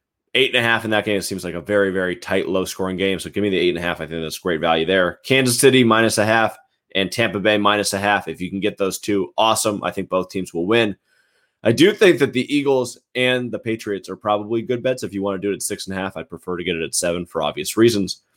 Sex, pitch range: male, 90-110 Hz